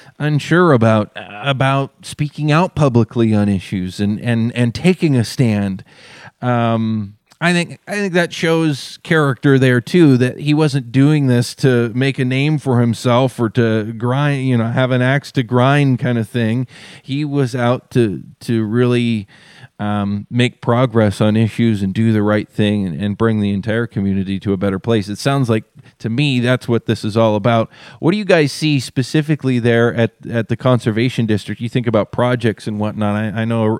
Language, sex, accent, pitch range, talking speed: English, male, American, 110-135 Hz, 190 wpm